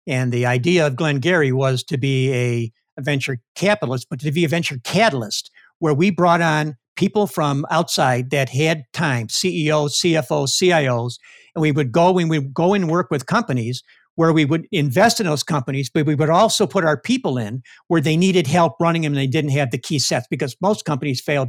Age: 60-79